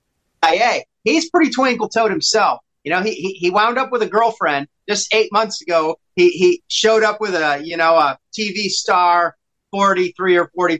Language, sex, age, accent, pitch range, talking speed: English, male, 40-59, American, 180-235 Hz, 165 wpm